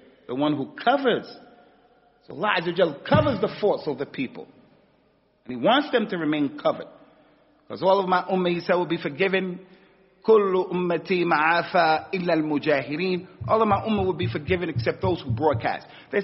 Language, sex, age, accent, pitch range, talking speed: English, male, 40-59, American, 155-205 Hz, 150 wpm